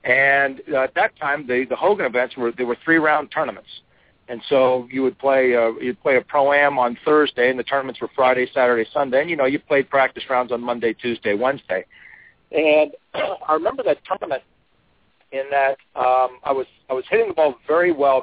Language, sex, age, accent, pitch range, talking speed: English, male, 50-69, American, 125-155 Hz, 200 wpm